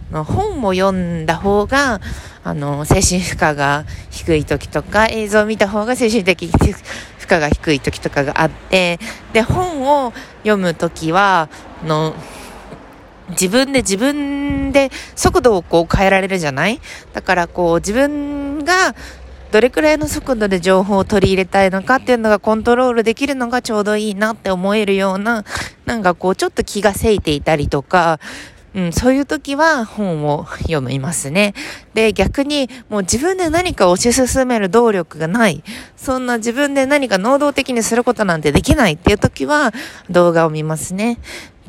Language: Japanese